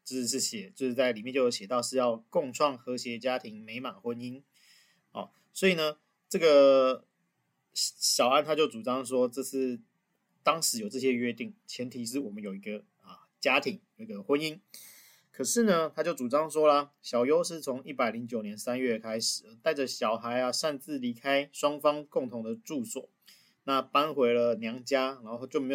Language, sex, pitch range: Chinese, male, 125-165 Hz